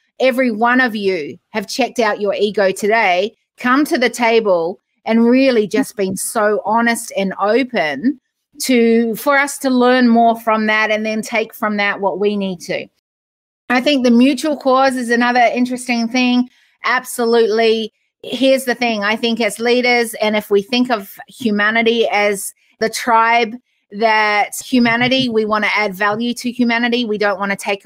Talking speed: 170 wpm